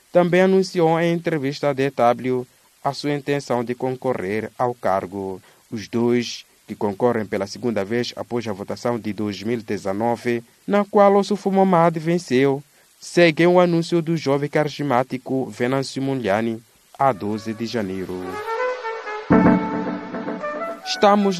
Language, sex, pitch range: English, male, 120-185 Hz